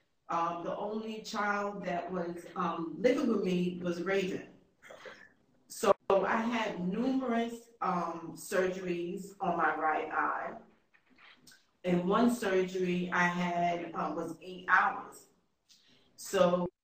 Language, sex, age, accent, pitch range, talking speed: English, female, 40-59, American, 180-220 Hz, 115 wpm